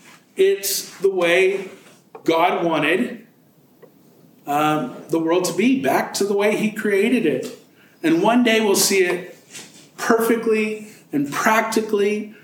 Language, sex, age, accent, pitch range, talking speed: English, male, 50-69, American, 155-205 Hz, 125 wpm